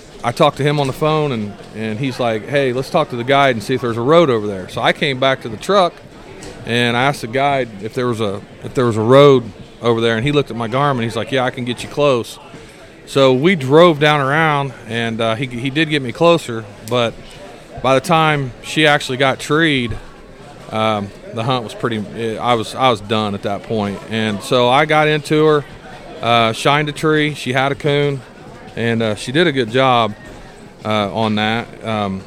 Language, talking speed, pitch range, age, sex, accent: English, 225 wpm, 115-145 Hz, 40-59, male, American